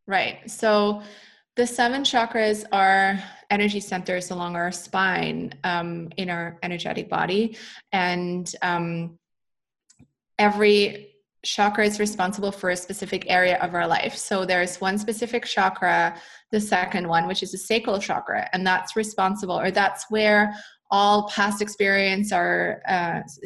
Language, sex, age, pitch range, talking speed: English, female, 20-39, 180-210 Hz, 135 wpm